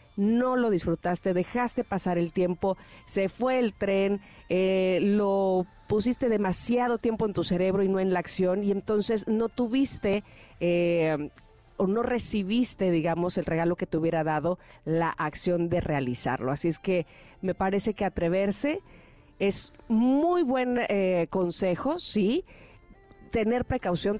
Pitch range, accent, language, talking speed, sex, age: 175-235 Hz, Mexican, Spanish, 145 wpm, female, 40-59